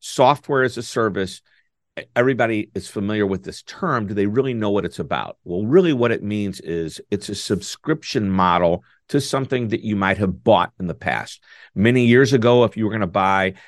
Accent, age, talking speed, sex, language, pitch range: American, 50-69, 200 wpm, male, English, 95-120 Hz